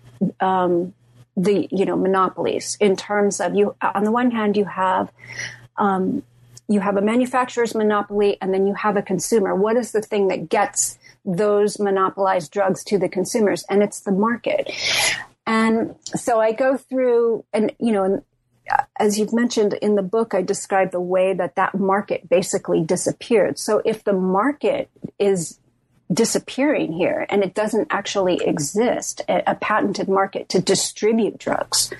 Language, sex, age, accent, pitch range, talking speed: English, female, 40-59, American, 190-225 Hz, 160 wpm